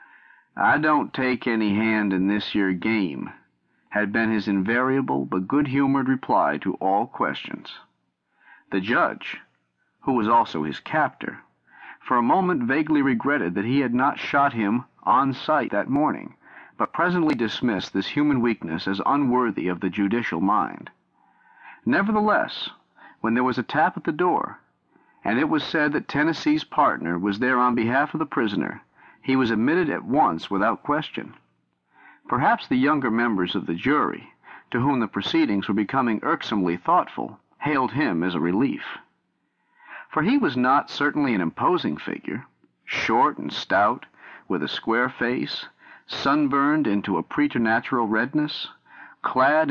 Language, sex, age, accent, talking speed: English, male, 50-69, American, 150 wpm